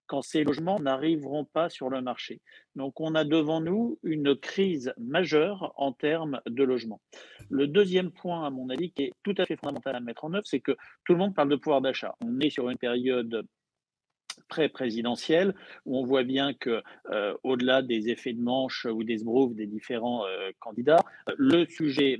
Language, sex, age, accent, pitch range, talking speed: French, male, 50-69, French, 125-155 Hz, 190 wpm